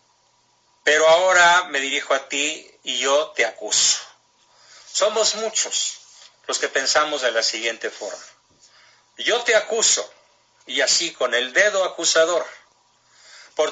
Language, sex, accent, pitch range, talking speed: Spanish, male, Mexican, 135-175 Hz, 125 wpm